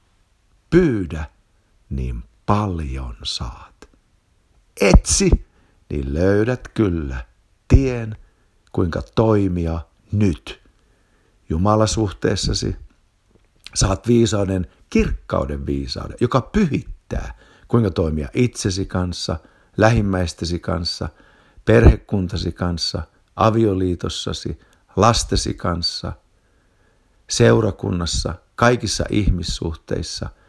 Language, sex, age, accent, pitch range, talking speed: Finnish, male, 60-79, native, 85-110 Hz, 65 wpm